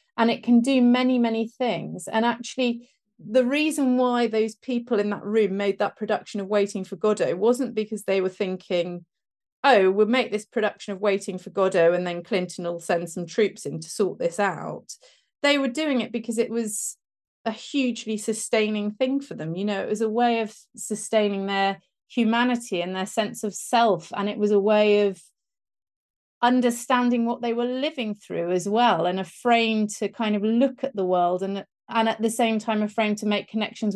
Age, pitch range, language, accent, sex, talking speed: 30-49, 190-230 Hz, English, British, female, 200 wpm